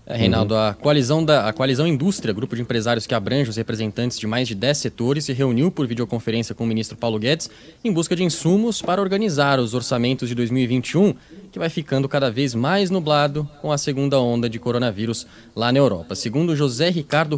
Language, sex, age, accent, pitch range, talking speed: English, male, 20-39, Brazilian, 120-160 Hz, 190 wpm